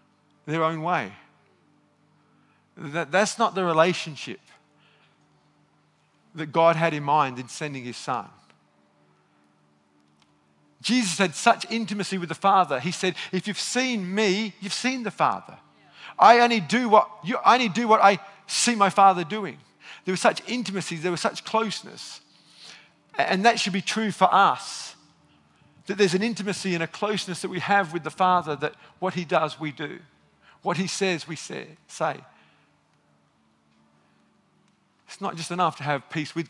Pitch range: 150-195 Hz